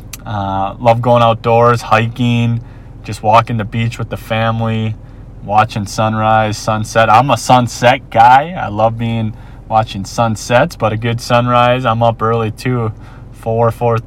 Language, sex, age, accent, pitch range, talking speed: English, male, 30-49, American, 110-120 Hz, 140 wpm